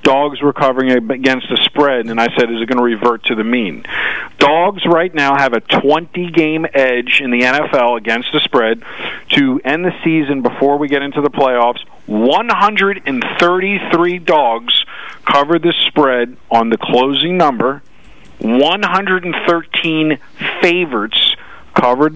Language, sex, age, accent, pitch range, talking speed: English, male, 40-59, American, 125-170 Hz, 145 wpm